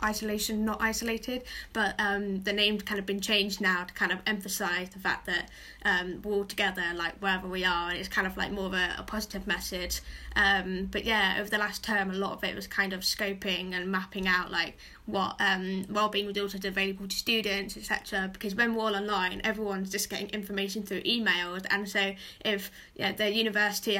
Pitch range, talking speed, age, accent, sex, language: 190-215 Hz, 205 wpm, 10-29, British, female, English